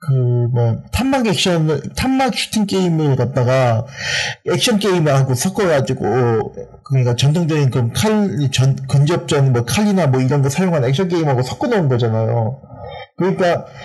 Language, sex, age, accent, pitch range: Korean, male, 40-59, native, 130-200 Hz